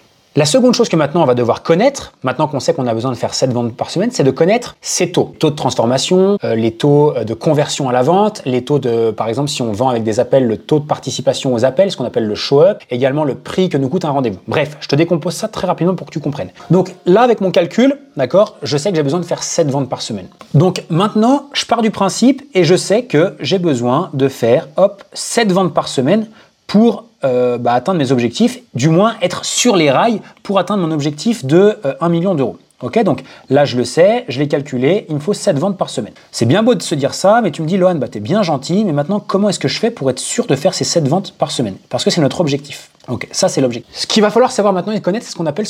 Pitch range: 135-200 Hz